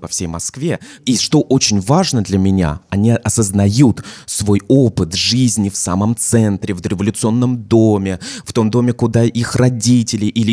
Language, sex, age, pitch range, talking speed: Russian, male, 20-39, 95-120 Hz, 155 wpm